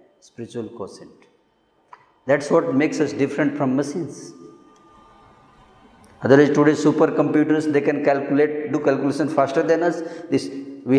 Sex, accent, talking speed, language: male, native, 125 wpm, Hindi